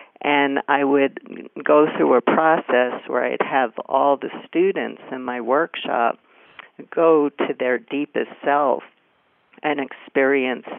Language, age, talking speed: English, 50-69, 130 wpm